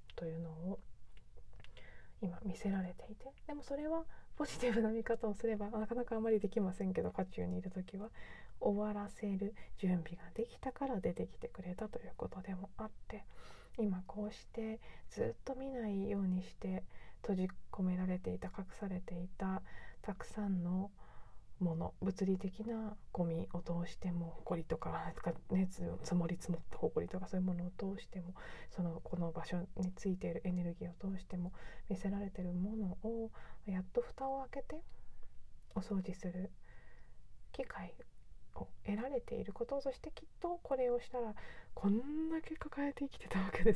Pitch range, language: 175-220 Hz, Japanese